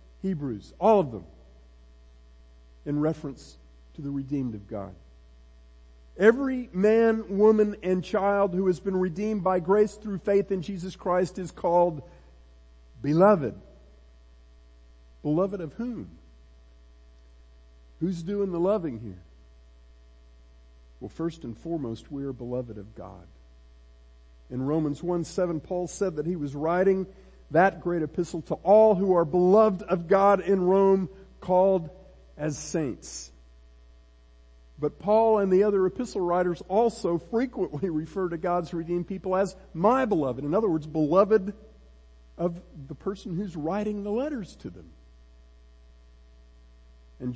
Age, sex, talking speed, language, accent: 50-69, male, 130 wpm, English, American